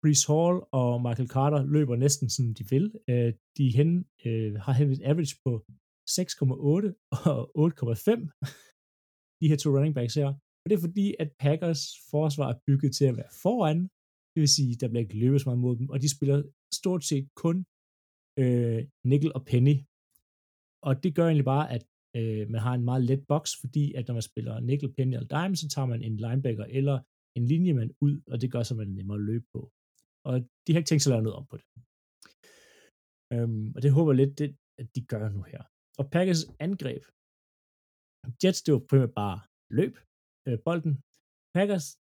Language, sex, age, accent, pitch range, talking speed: Danish, male, 30-49, native, 120-155 Hz, 190 wpm